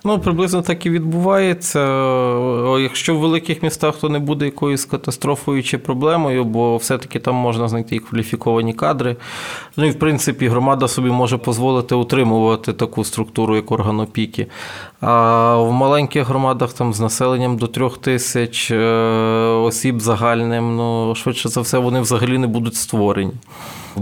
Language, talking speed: Ukrainian, 150 wpm